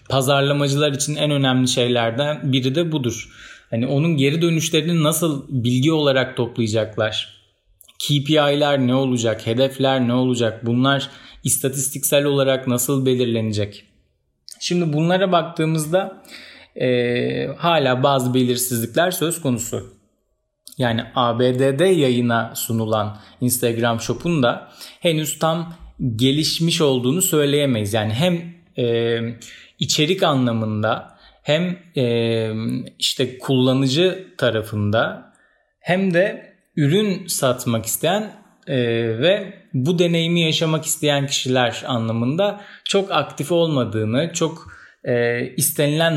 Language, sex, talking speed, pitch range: Turkish, male, 95 wpm, 120-165 Hz